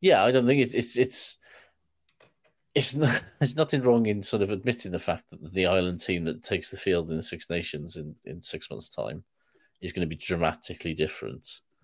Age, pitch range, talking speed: 30-49, 85-110 Hz, 210 wpm